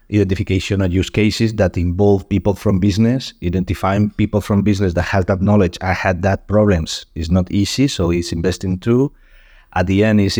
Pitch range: 95-115 Hz